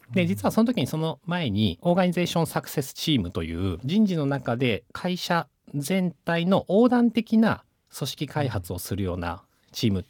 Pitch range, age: 95-145 Hz, 40-59